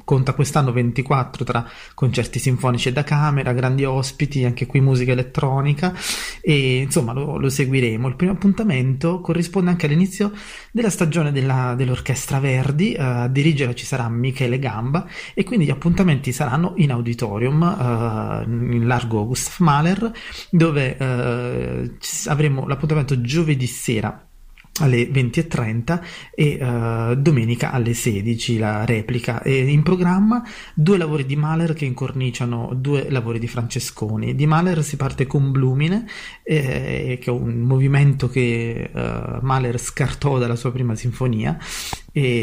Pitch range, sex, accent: 125-150 Hz, male, native